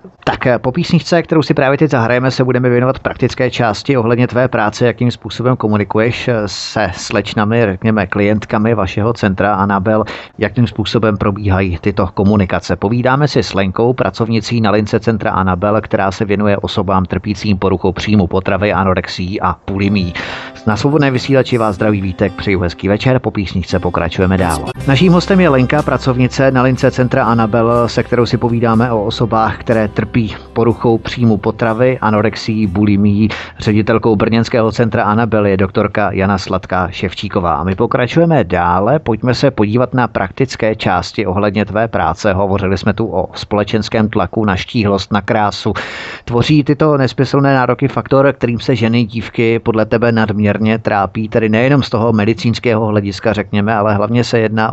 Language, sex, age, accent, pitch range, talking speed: Czech, male, 30-49, native, 100-120 Hz, 155 wpm